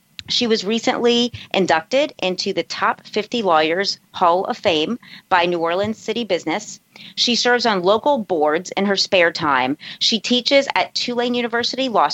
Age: 40-59